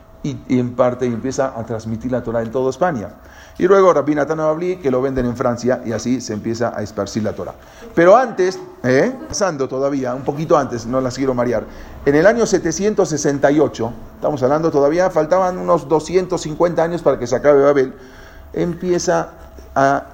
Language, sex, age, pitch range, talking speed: English, male, 40-59, 115-165 Hz, 175 wpm